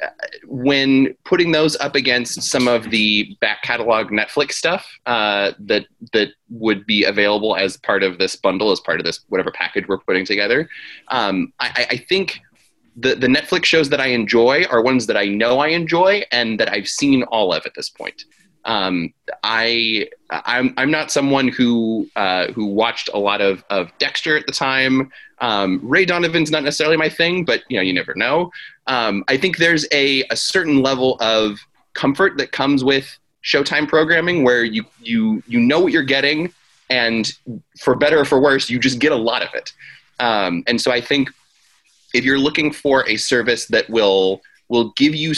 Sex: male